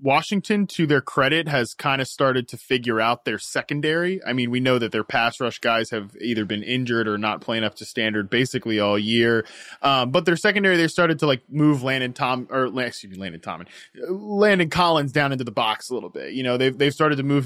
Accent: American